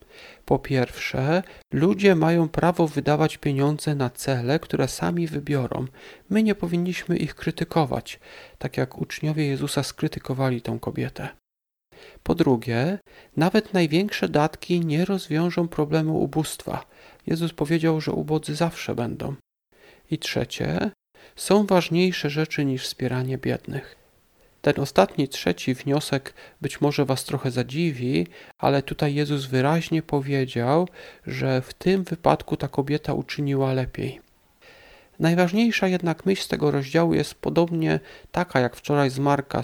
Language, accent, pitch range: Polish, native, 135-170 Hz